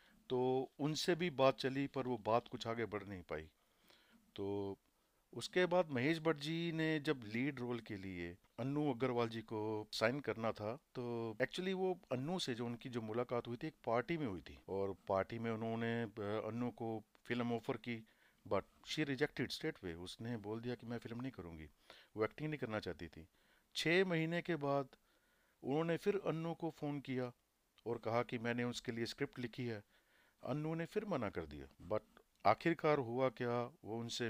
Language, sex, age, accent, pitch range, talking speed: Hindi, male, 50-69, native, 110-145 Hz, 185 wpm